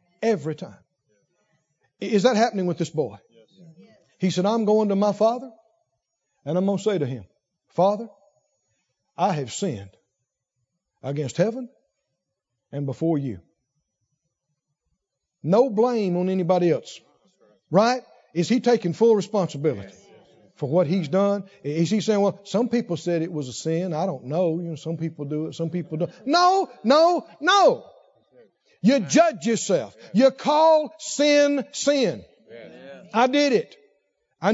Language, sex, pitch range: English, male, 165-240 Hz